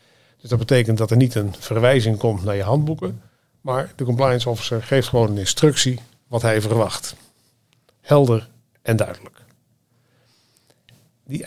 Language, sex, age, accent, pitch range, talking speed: Dutch, male, 50-69, Dutch, 110-130 Hz, 140 wpm